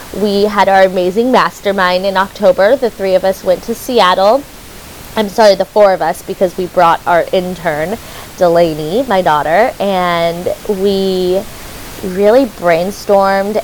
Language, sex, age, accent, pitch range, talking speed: English, female, 20-39, American, 185-235 Hz, 140 wpm